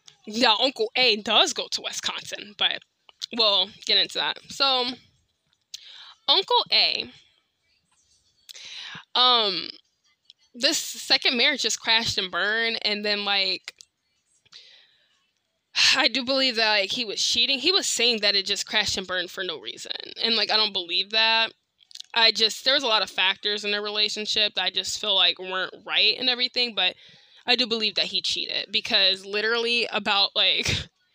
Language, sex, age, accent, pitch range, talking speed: English, female, 10-29, American, 200-255 Hz, 160 wpm